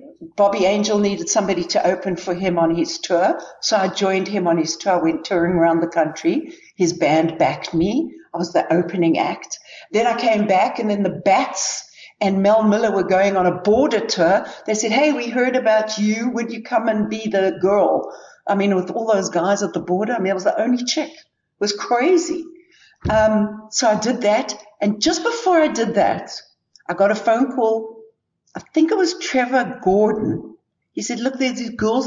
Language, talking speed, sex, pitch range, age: English, 210 wpm, female, 190-265 Hz, 60-79